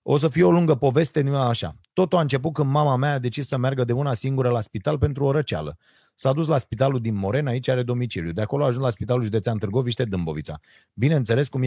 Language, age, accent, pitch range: Romanian, 30-49, native, 115-140 Hz